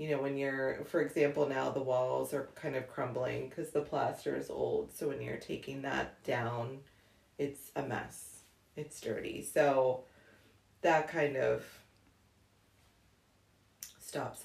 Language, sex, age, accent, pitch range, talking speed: English, female, 30-49, American, 95-150 Hz, 140 wpm